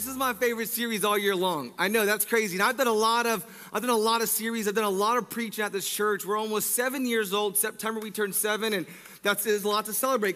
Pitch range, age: 195-245 Hz, 30-49